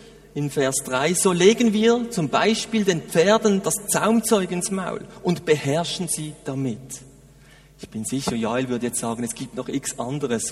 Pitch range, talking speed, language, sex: 140-205 Hz, 170 wpm, German, male